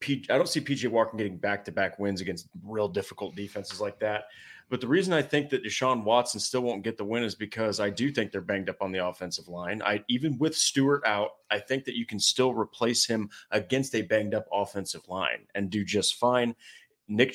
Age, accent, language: 30-49, American, English